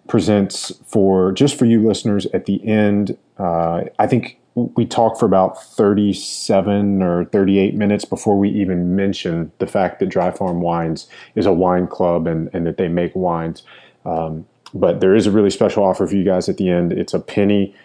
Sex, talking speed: male, 190 wpm